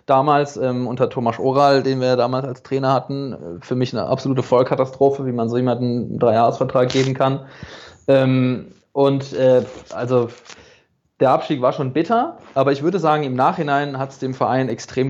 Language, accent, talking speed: German, German, 175 wpm